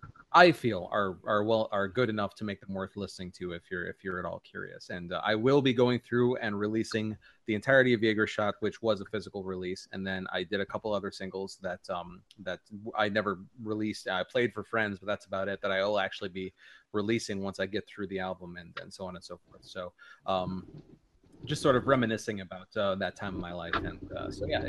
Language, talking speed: English, 240 wpm